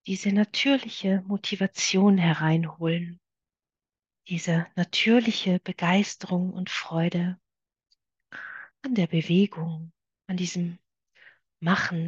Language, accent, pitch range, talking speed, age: German, German, 170-195 Hz, 75 wpm, 40-59